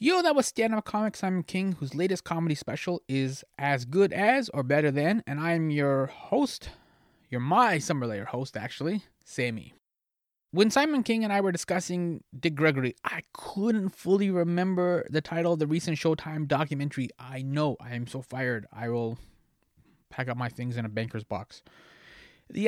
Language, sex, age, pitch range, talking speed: English, male, 20-39, 130-180 Hz, 175 wpm